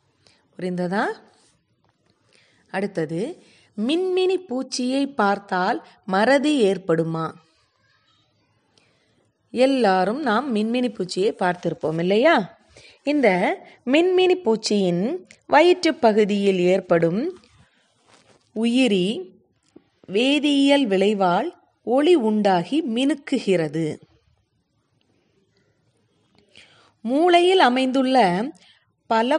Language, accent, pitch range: Tamil, native, 185-275 Hz